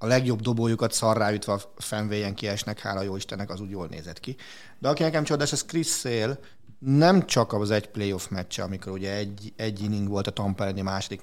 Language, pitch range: Hungarian, 100-120 Hz